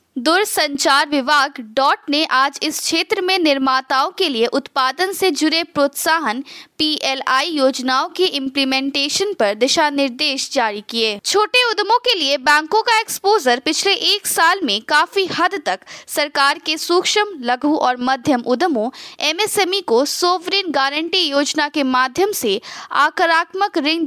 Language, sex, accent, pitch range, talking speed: Hindi, female, native, 275-370 Hz, 135 wpm